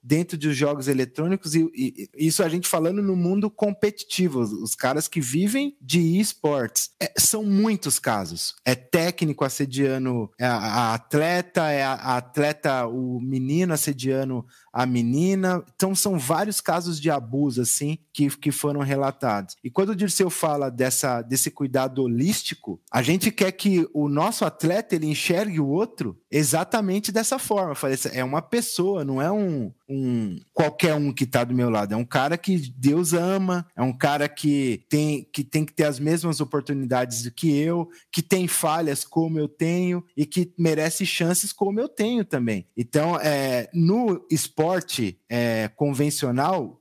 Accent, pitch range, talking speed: Brazilian, 135-180 Hz, 160 wpm